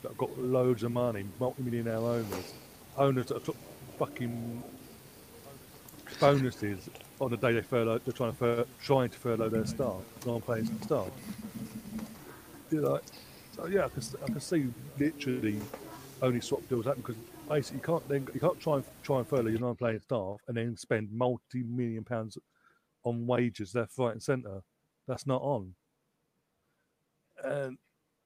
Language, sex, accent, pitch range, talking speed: English, male, British, 110-135 Hz, 160 wpm